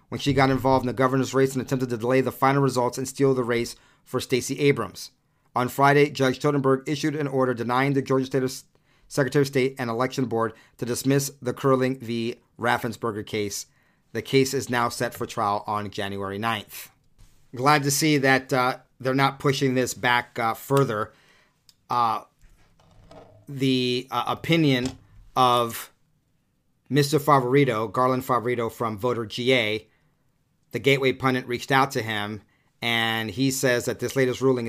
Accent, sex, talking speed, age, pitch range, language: American, male, 165 wpm, 40-59, 115-135 Hz, English